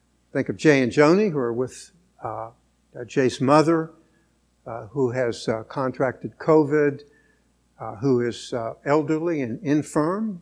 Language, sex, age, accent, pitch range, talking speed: English, male, 60-79, American, 120-160 Hz, 140 wpm